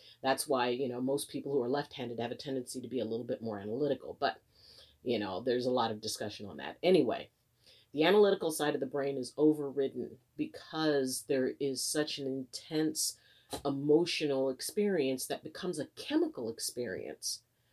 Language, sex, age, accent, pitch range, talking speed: English, female, 40-59, American, 120-155 Hz, 175 wpm